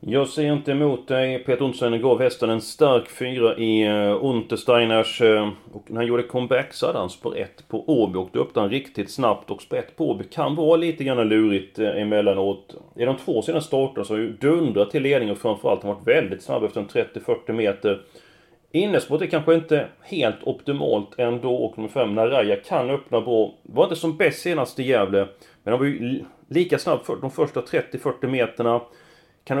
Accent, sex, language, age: native, male, Swedish, 30-49